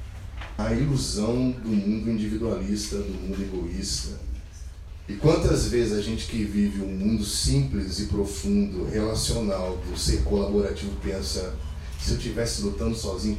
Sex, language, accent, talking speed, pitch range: male, Portuguese, Brazilian, 135 wpm, 75-105 Hz